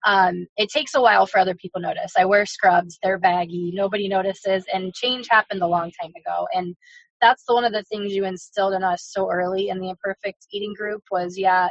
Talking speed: 225 wpm